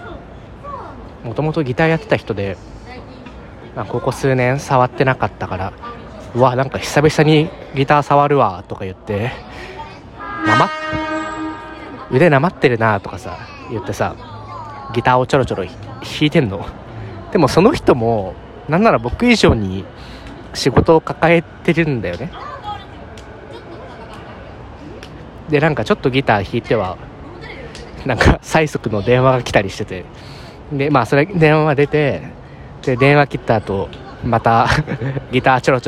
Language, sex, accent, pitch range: Japanese, male, native, 115-160 Hz